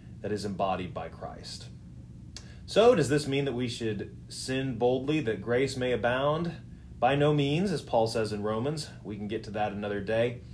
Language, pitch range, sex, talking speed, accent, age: English, 90-115 Hz, male, 190 wpm, American, 30-49